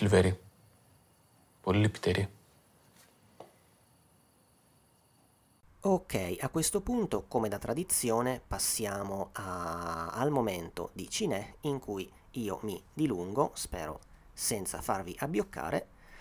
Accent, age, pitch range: native, 30-49, 95-145 Hz